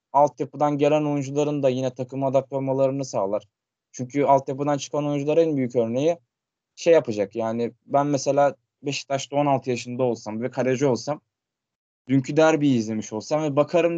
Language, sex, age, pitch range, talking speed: Turkish, male, 20-39, 120-145 Hz, 140 wpm